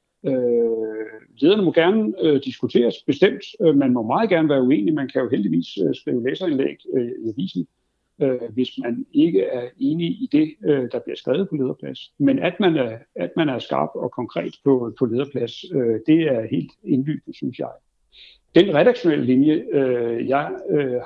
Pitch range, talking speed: 125-180 Hz, 180 wpm